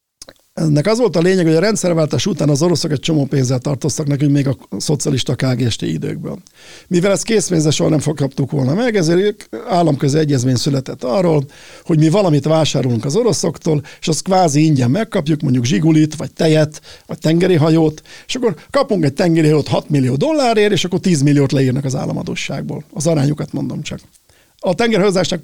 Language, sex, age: Hungarian, male, 50-69